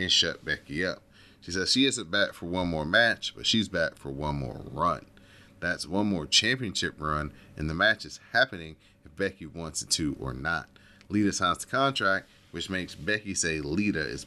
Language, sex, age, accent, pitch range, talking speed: English, male, 30-49, American, 80-100 Hz, 200 wpm